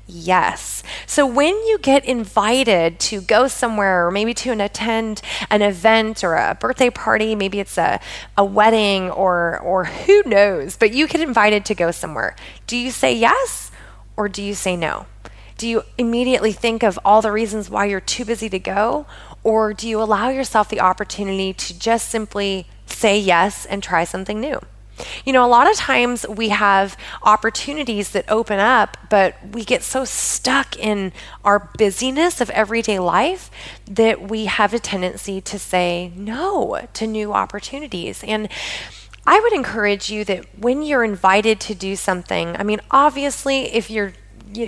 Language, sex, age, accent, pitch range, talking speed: English, female, 20-39, American, 195-240 Hz, 170 wpm